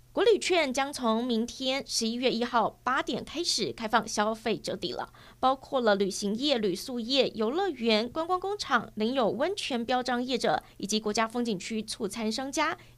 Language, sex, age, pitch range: Chinese, female, 20-39, 220-285 Hz